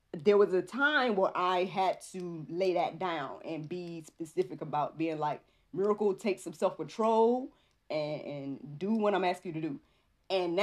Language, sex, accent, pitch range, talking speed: English, female, American, 160-220 Hz, 180 wpm